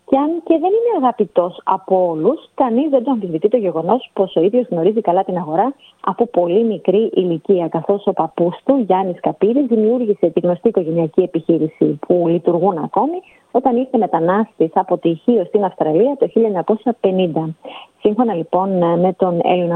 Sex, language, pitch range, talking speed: female, Greek, 175-240 Hz, 160 wpm